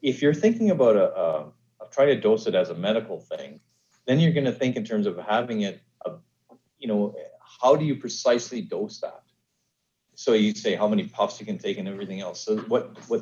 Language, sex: English, male